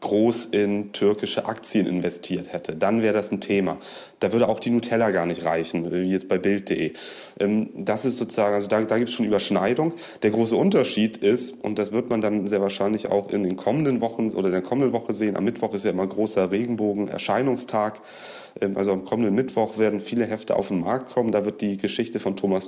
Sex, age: male, 30-49